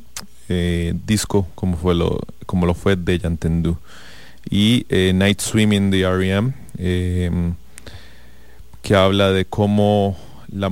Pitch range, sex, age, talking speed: 85-100 Hz, male, 30-49, 125 wpm